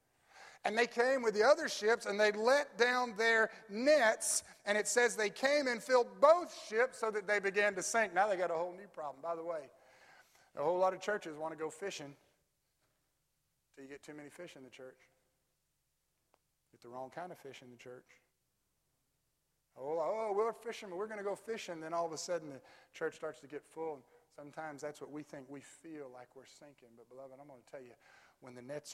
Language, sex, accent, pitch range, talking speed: English, male, American, 135-200 Hz, 225 wpm